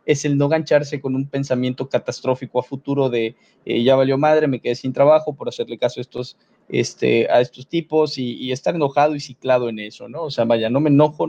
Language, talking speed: Spanish, 220 wpm